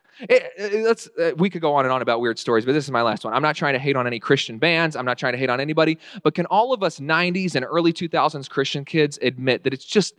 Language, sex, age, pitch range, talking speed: English, male, 20-39, 145-220 Hz, 295 wpm